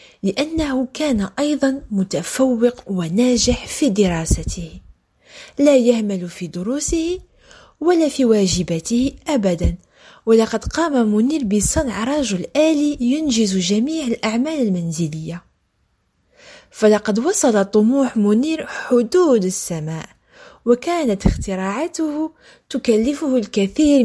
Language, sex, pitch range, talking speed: French, female, 195-295 Hz, 85 wpm